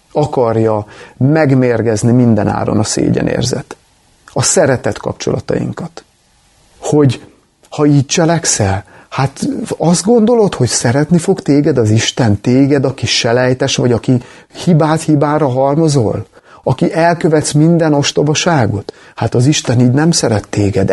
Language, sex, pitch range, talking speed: Hungarian, male, 125-180 Hz, 115 wpm